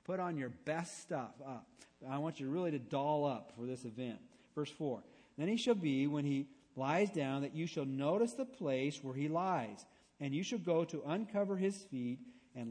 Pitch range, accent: 130-175 Hz, American